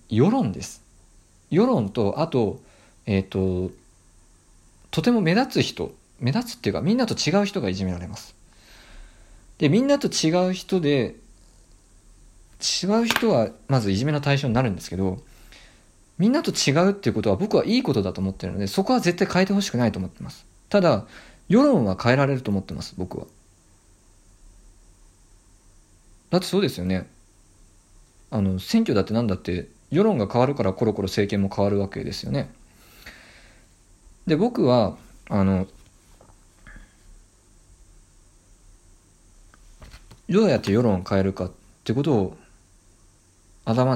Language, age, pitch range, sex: Japanese, 50-69, 90-115 Hz, male